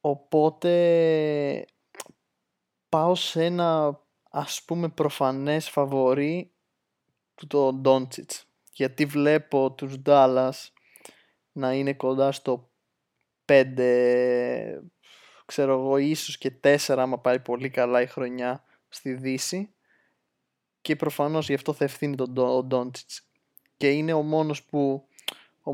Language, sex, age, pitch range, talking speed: Greek, male, 20-39, 130-155 Hz, 105 wpm